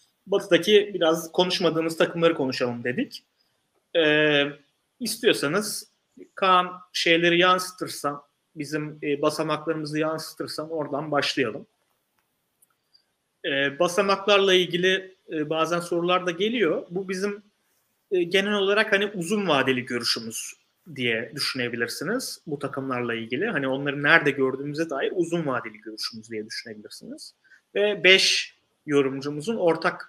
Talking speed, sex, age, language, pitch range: 105 wpm, male, 30-49, Turkish, 145-210 Hz